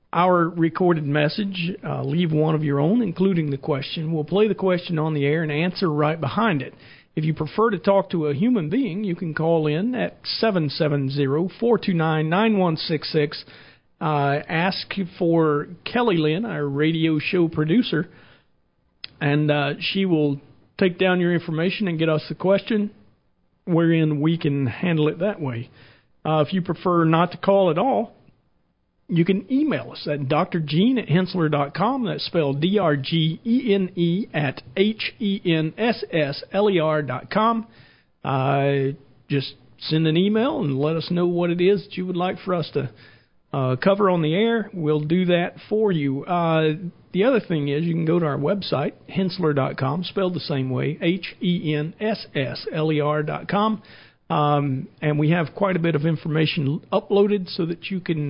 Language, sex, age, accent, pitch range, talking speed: English, male, 50-69, American, 150-190 Hz, 155 wpm